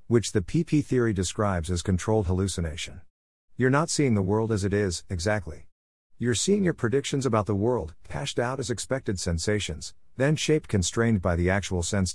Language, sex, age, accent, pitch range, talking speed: English, male, 50-69, American, 90-115 Hz, 180 wpm